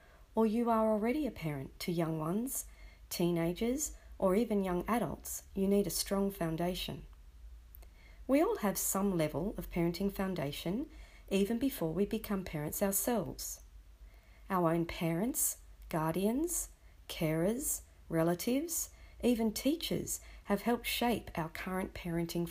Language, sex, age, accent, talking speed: English, female, 40-59, Australian, 125 wpm